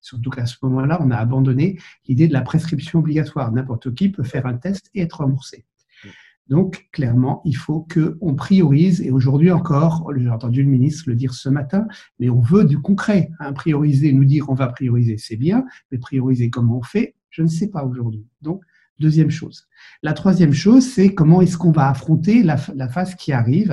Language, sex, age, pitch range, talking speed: French, male, 60-79, 130-165 Hz, 200 wpm